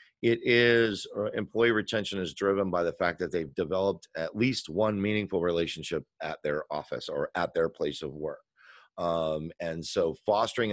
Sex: male